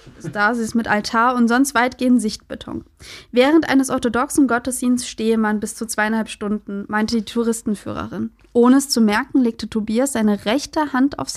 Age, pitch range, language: 20-39, 220-285 Hz, German